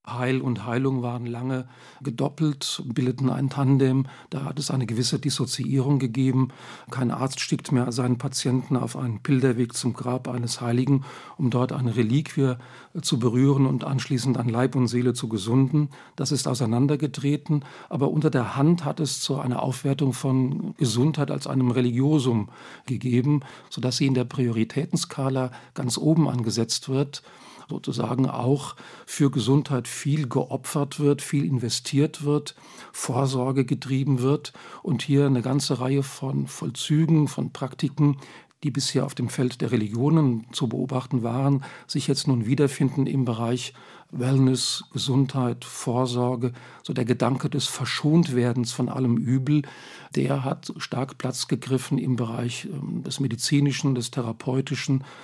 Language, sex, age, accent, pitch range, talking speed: German, male, 40-59, German, 125-140 Hz, 140 wpm